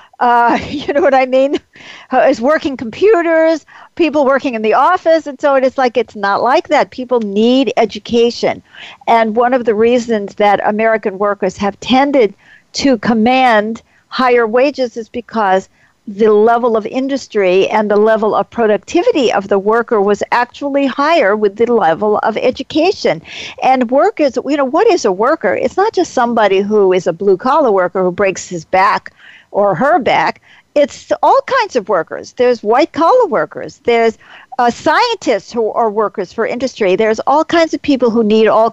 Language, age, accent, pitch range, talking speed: English, 50-69, American, 215-285 Hz, 170 wpm